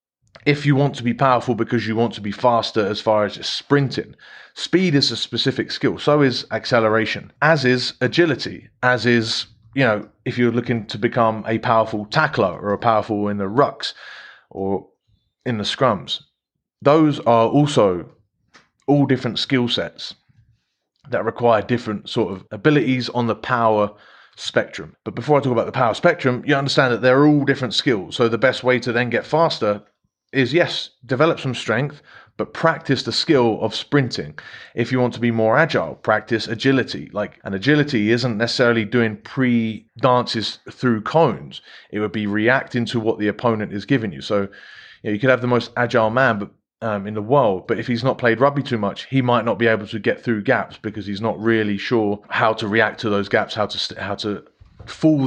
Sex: male